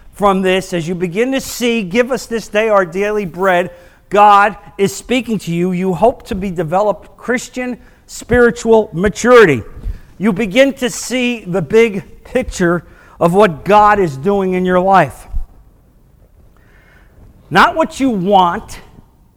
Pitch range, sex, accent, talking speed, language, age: 160-225 Hz, male, American, 145 wpm, English, 50-69